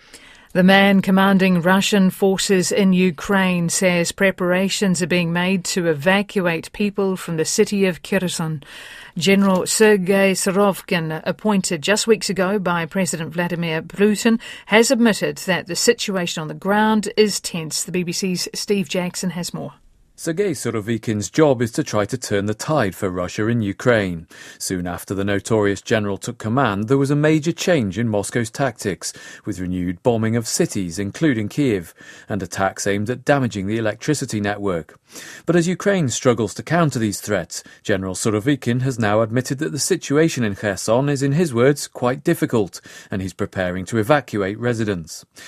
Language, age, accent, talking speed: English, 40-59, British, 160 wpm